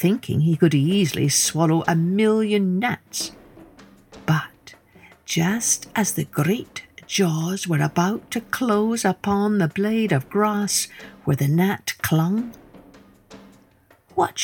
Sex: female